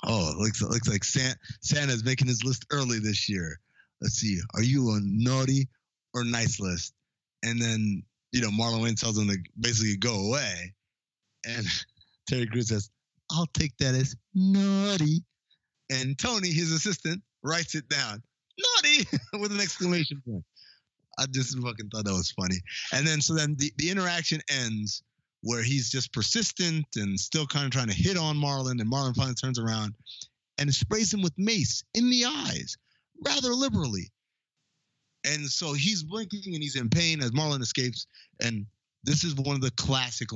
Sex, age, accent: male, 30-49, American